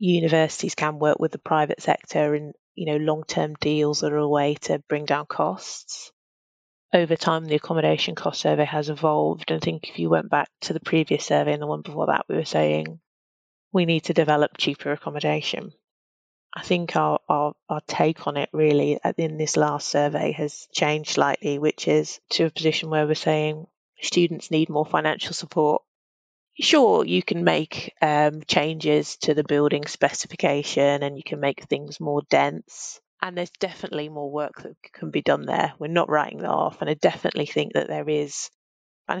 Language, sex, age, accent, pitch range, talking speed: English, female, 30-49, British, 145-160 Hz, 185 wpm